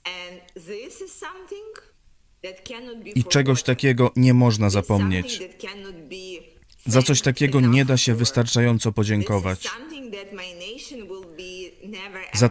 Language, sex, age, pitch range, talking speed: Polish, female, 20-39, 115-180 Hz, 70 wpm